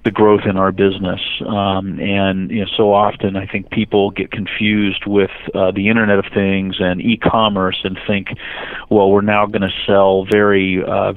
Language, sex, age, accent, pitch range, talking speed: English, male, 40-59, American, 95-105 Hz, 175 wpm